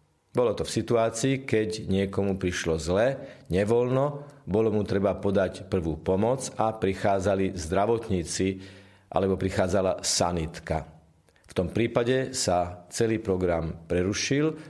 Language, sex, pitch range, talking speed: Slovak, male, 90-115 Hz, 115 wpm